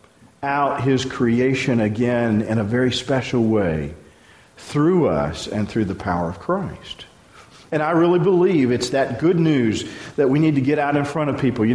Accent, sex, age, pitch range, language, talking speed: American, male, 50-69, 105-155 Hz, English, 185 wpm